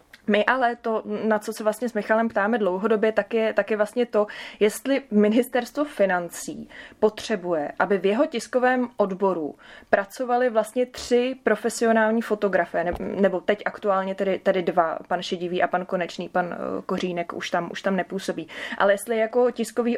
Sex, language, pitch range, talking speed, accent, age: female, Czech, 205-225 Hz, 155 wpm, native, 20-39